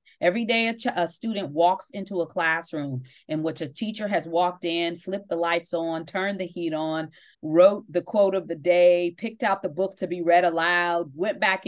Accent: American